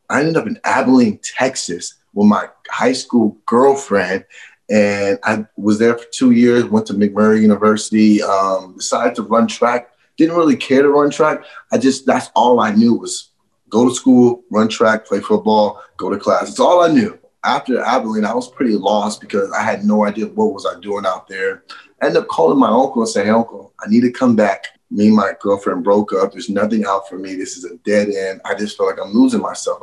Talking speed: 220 wpm